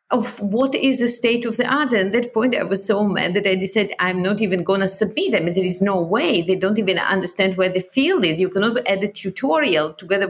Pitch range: 185-240 Hz